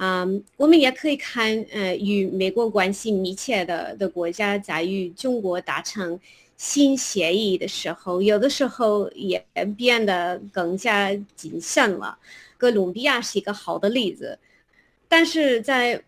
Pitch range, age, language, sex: 185-235 Hz, 30-49, Chinese, female